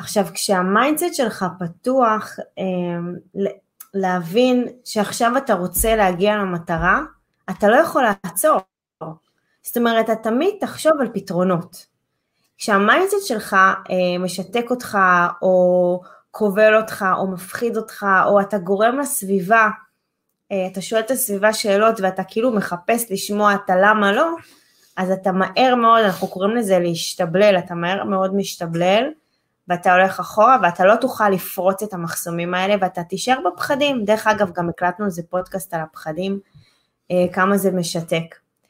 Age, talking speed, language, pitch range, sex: 20-39, 130 wpm, Hebrew, 185-225 Hz, female